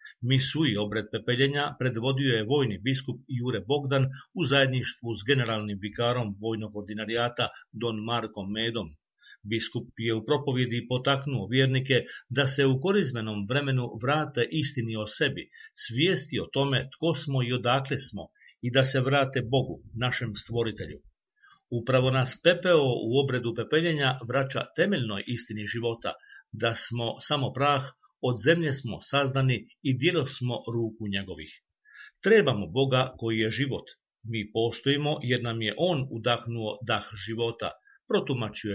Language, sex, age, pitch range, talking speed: Croatian, male, 50-69, 115-140 Hz, 135 wpm